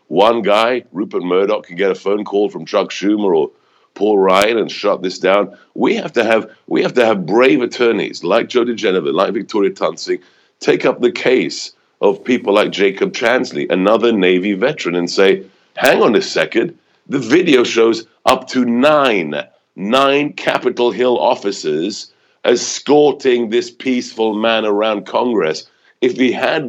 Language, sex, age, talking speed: English, male, 50-69, 160 wpm